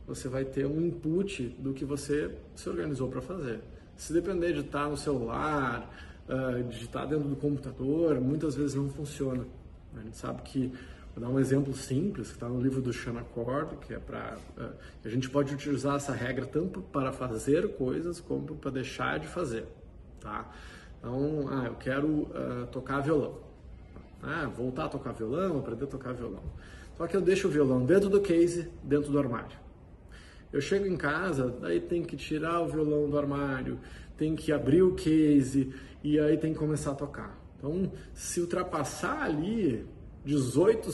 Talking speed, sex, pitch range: 175 wpm, male, 130-155 Hz